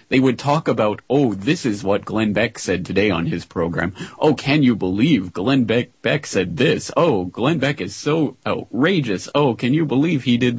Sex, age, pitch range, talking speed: male, 30-49, 100-135 Hz, 205 wpm